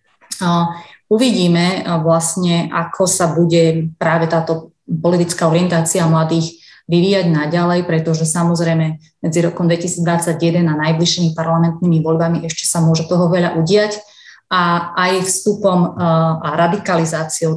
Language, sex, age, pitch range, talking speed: Slovak, female, 30-49, 155-175 Hz, 120 wpm